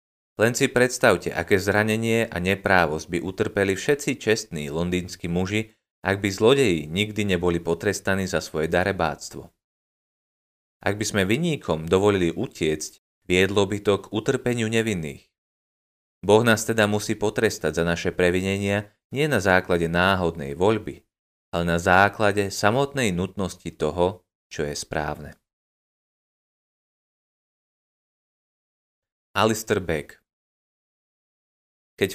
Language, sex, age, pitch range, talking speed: Slovak, male, 30-49, 85-110 Hz, 105 wpm